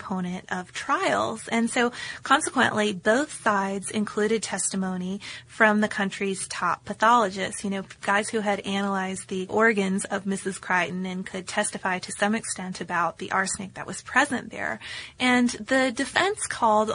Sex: female